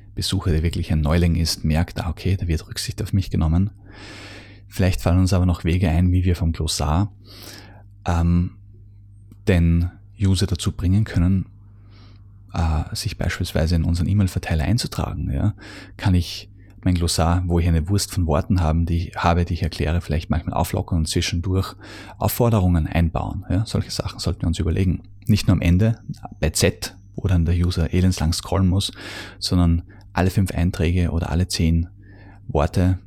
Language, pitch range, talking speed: German, 85-100 Hz, 170 wpm